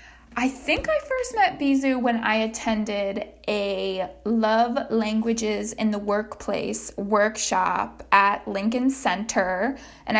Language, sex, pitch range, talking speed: English, female, 205-255 Hz, 120 wpm